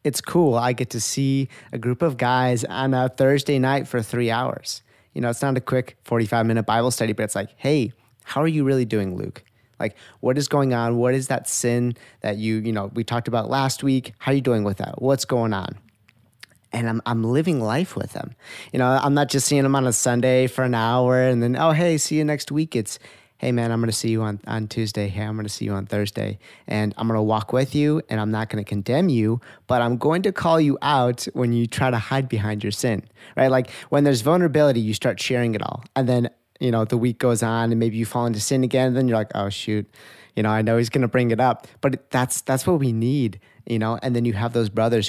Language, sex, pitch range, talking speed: English, male, 110-130 Hz, 255 wpm